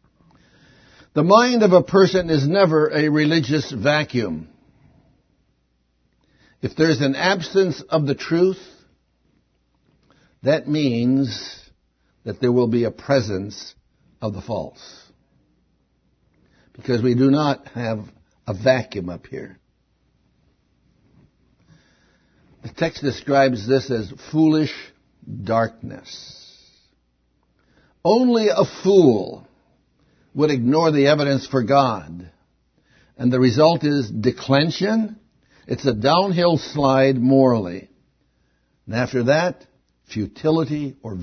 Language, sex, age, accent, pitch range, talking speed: English, male, 60-79, American, 105-150 Hz, 100 wpm